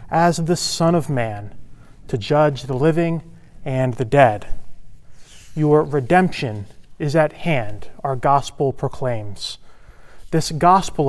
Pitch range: 125-170 Hz